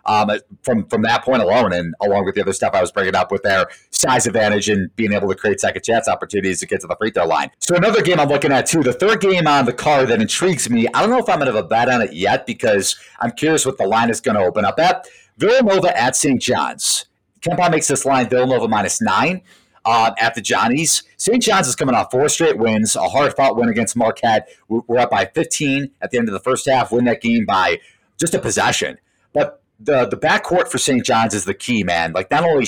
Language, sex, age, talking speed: English, male, 30-49, 250 wpm